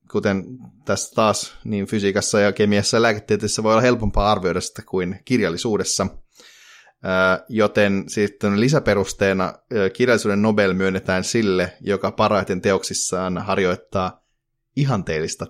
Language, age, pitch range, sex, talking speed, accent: Finnish, 30-49, 95-110 Hz, male, 110 wpm, native